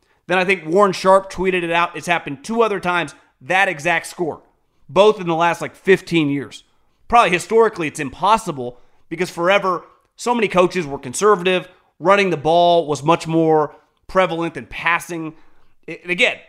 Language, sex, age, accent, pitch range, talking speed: English, male, 30-49, American, 160-205 Hz, 160 wpm